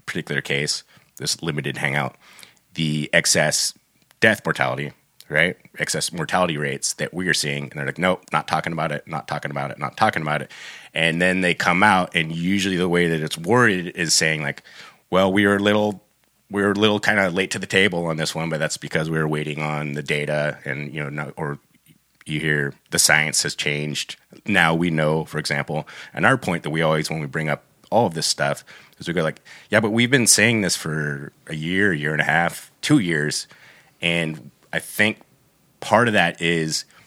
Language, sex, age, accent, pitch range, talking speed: English, male, 30-49, American, 75-90 Hz, 210 wpm